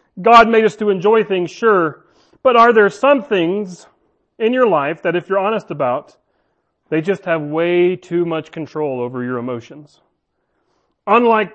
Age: 40-59